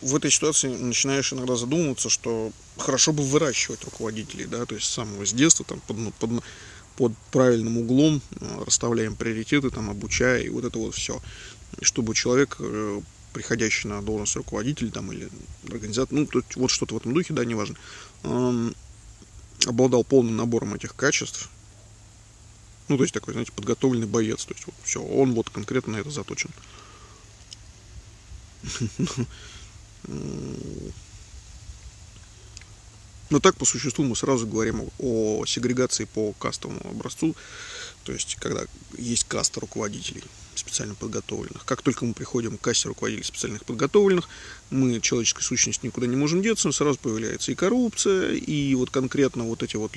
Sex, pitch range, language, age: male, 105-130 Hz, Russian, 20-39